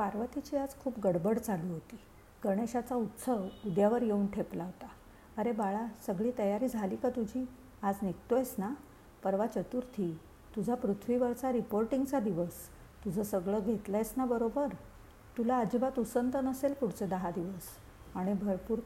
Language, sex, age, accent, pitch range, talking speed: Marathi, female, 50-69, native, 190-235 Hz, 125 wpm